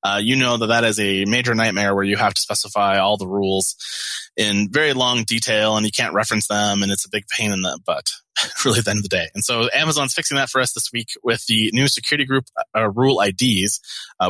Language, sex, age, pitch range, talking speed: English, male, 20-39, 100-120 Hz, 250 wpm